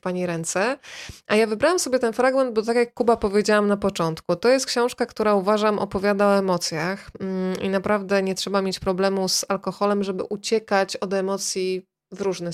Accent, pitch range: native, 185-215 Hz